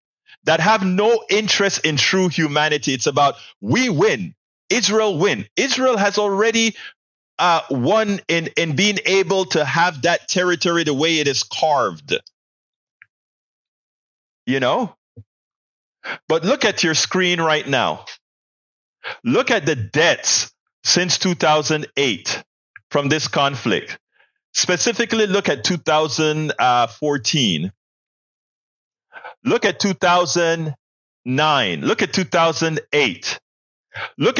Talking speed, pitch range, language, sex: 105 wpm, 145-200 Hz, English, male